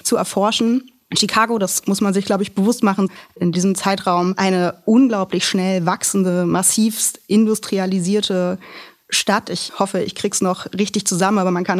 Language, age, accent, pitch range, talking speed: German, 20-39, German, 175-210 Hz, 165 wpm